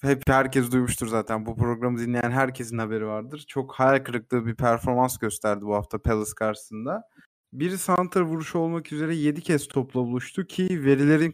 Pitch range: 120-155 Hz